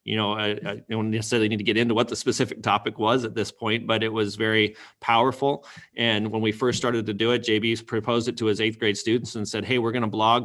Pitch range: 110-125 Hz